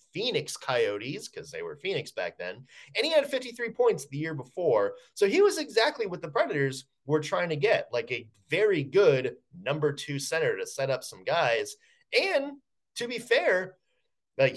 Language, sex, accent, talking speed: English, male, American, 180 wpm